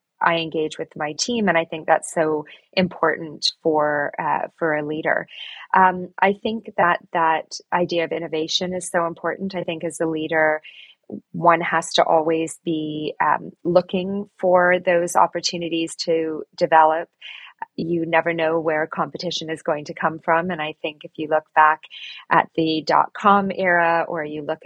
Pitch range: 155-175 Hz